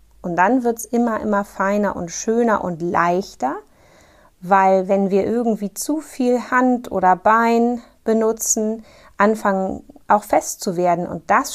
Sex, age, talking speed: female, 30-49, 145 wpm